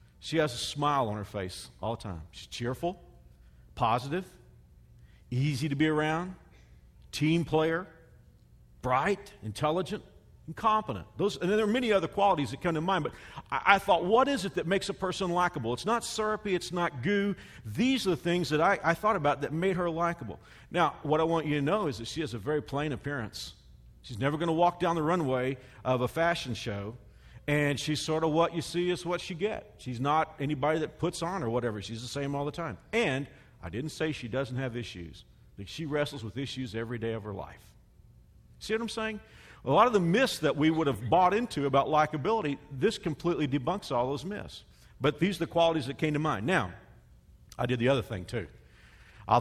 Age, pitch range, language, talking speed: 50-69, 120-170 Hz, English, 210 wpm